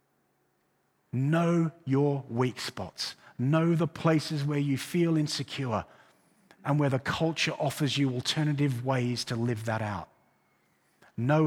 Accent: British